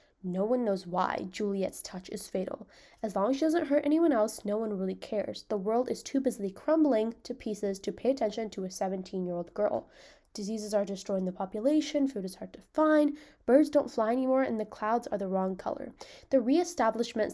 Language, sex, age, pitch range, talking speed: English, female, 10-29, 200-260 Hz, 210 wpm